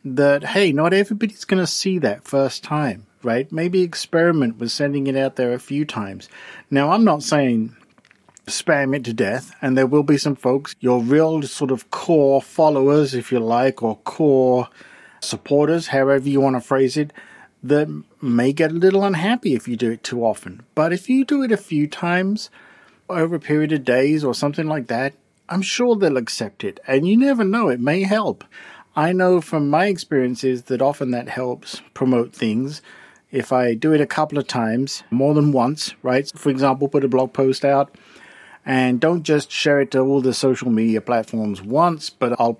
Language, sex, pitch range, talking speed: English, male, 125-160 Hz, 195 wpm